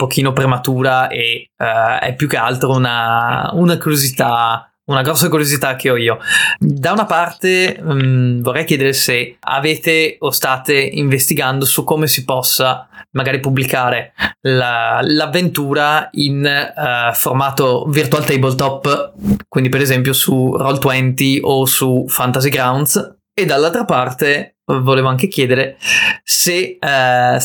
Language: Italian